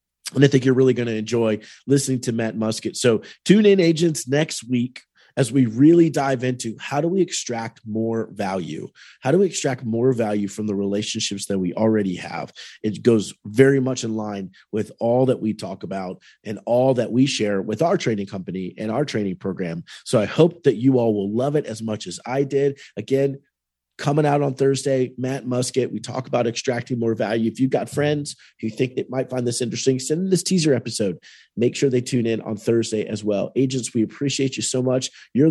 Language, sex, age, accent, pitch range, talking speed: English, male, 30-49, American, 110-135 Hz, 215 wpm